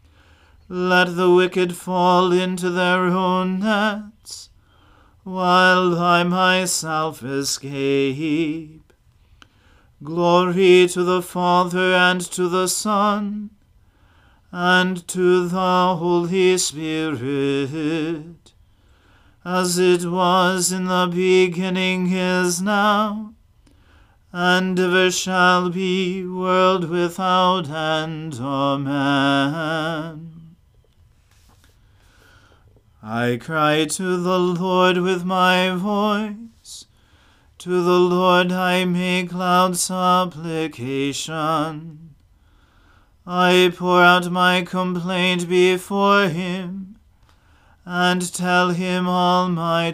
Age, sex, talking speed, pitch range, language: 40-59, male, 85 wpm, 155-185 Hz, English